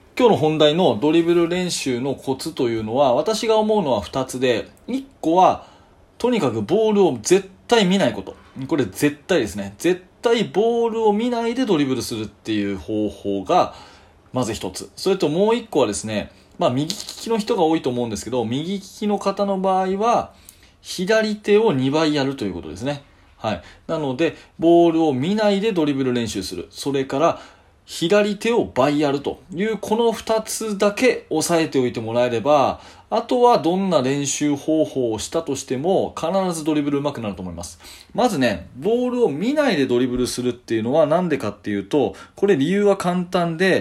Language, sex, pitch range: Japanese, male, 125-205 Hz